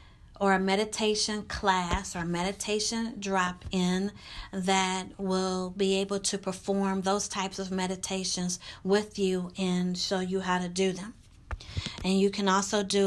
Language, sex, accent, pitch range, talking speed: English, female, American, 180-215 Hz, 145 wpm